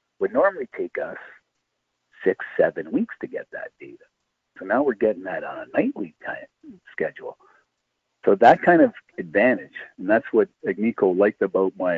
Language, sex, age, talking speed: English, male, 50-69, 170 wpm